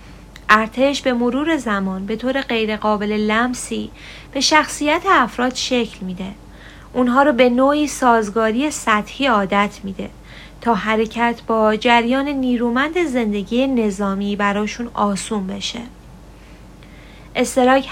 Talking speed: 110 wpm